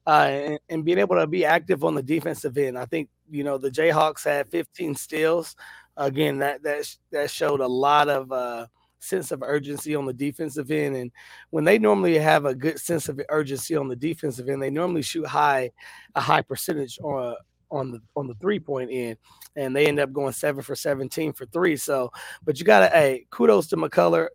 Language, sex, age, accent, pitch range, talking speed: English, male, 20-39, American, 135-155 Hz, 210 wpm